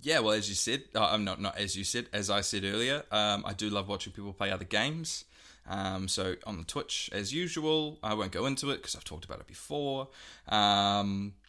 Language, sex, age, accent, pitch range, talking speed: English, male, 20-39, Australian, 100-120 Hz, 230 wpm